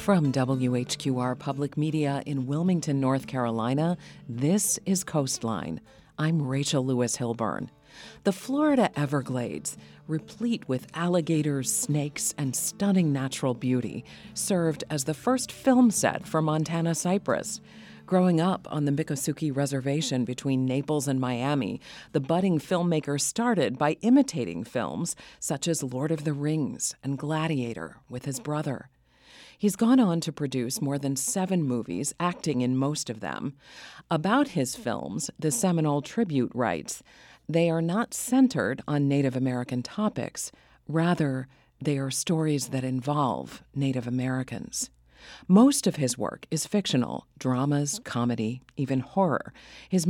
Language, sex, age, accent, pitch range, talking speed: English, female, 40-59, American, 130-170 Hz, 130 wpm